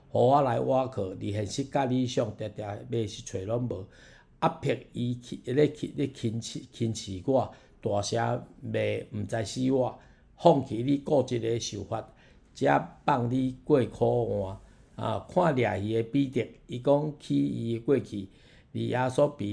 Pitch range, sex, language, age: 110-135 Hz, male, Chinese, 50-69